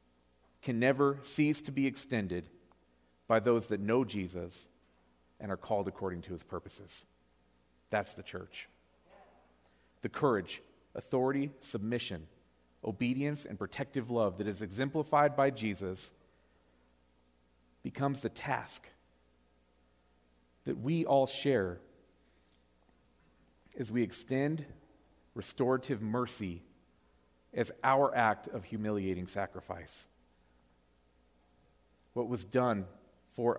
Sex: male